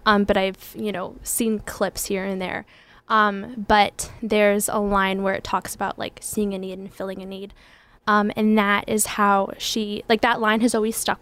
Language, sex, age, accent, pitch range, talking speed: English, female, 10-29, American, 200-230 Hz, 210 wpm